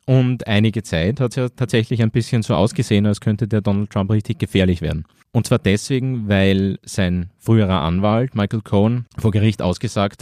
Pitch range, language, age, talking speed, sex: 95-115 Hz, German, 30-49, 180 wpm, male